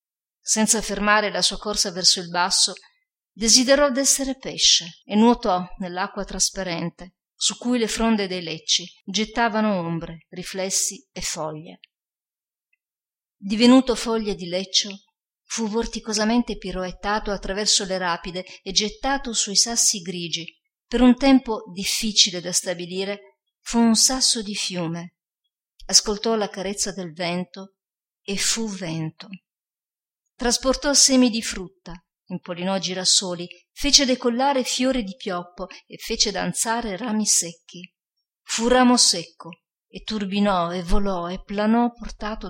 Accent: native